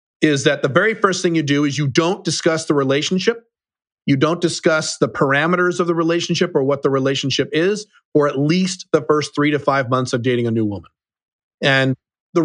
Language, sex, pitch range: English, male, 145-190 Hz